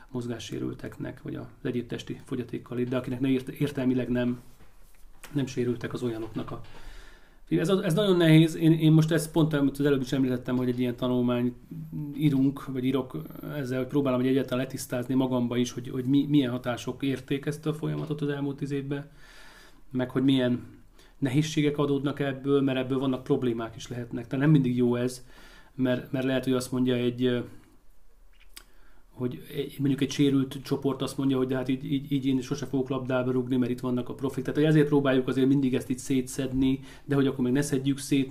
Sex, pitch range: male, 125-145 Hz